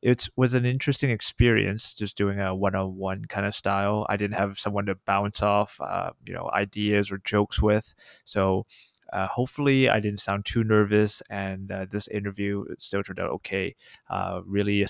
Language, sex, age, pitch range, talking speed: English, male, 20-39, 100-110 Hz, 180 wpm